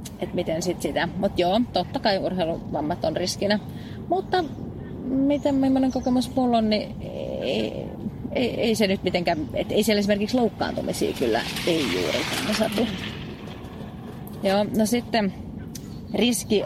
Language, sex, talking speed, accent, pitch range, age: Finnish, female, 135 wpm, native, 180-230 Hz, 30-49